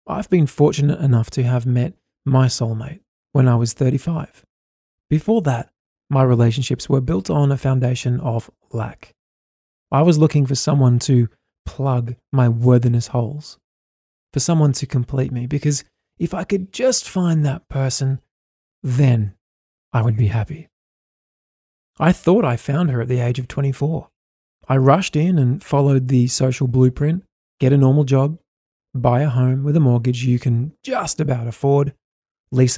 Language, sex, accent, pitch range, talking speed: English, male, Australian, 120-145 Hz, 155 wpm